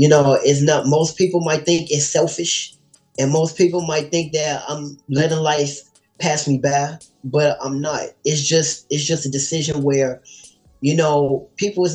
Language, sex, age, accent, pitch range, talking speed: English, male, 20-39, American, 135-155 Hz, 180 wpm